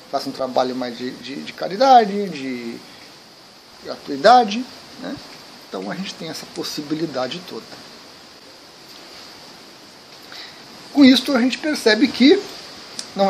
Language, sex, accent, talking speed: Portuguese, male, Brazilian, 115 wpm